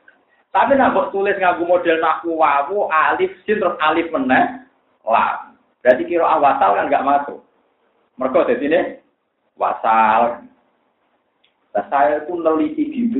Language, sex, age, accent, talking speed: Indonesian, male, 30-49, native, 115 wpm